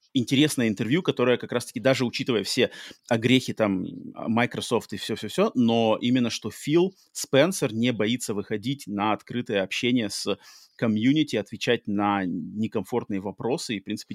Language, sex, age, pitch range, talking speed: Russian, male, 30-49, 110-140 Hz, 145 wpm